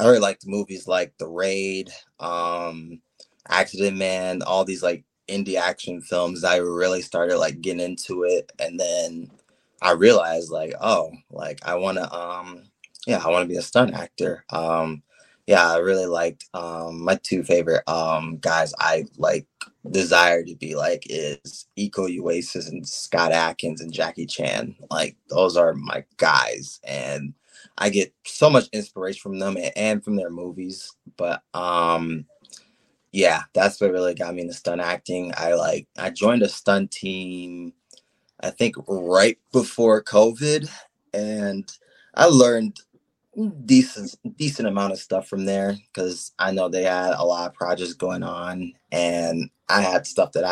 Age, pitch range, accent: 20-39, 85-105 Hz, American